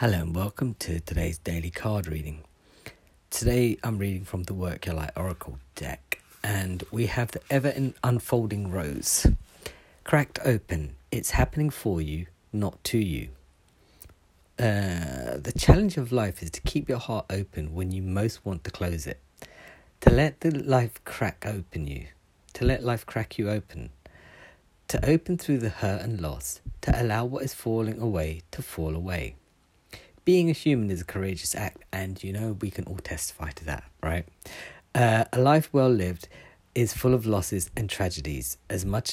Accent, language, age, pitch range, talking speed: British, English, 40-59, 85-120 Hz, 170 wpm